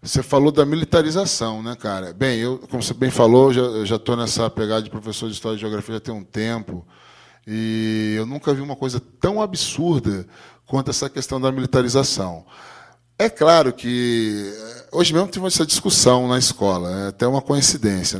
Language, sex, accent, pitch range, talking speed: Portuguese, male, Brazilian, 115-155 Hz, 180 wpm